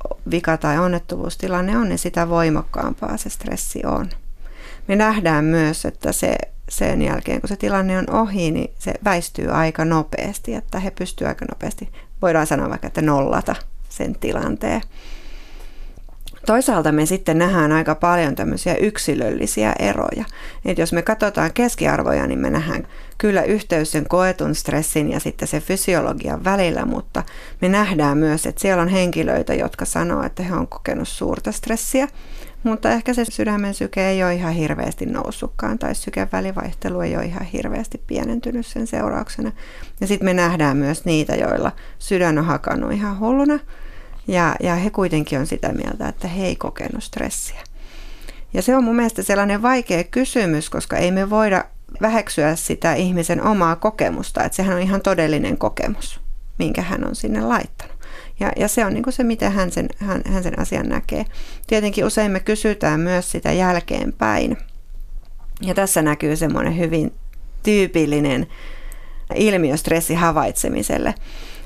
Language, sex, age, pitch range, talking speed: Finnish, female, 30-49, 160-215 Hz, 155 wpm